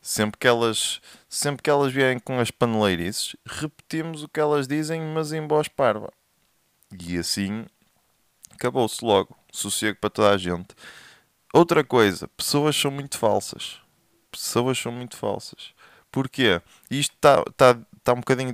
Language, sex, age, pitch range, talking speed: Portuguese, male, 20-39, 105-145 Hz, 140 wpm